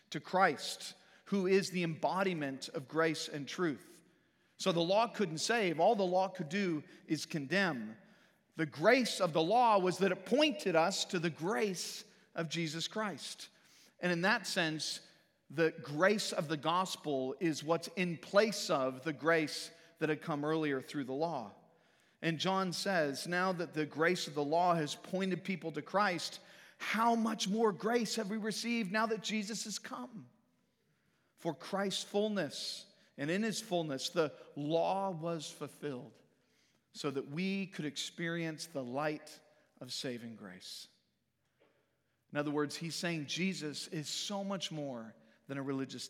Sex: male